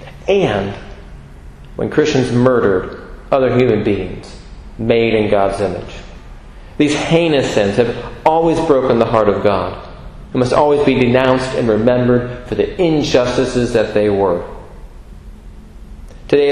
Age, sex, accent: 40-59, male, American